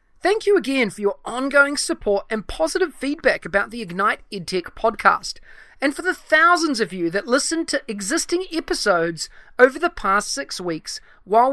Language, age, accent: English, 30-49, Australian